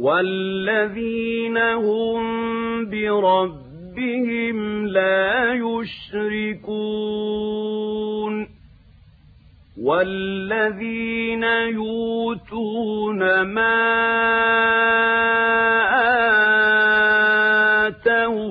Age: 40-59